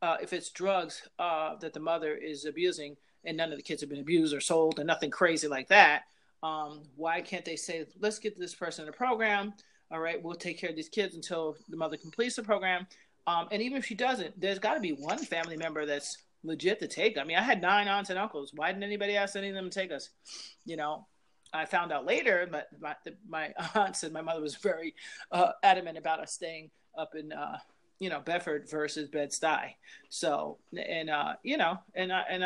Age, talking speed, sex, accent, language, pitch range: 30-49, 220 wpm, male, American, English, 155-195 Hz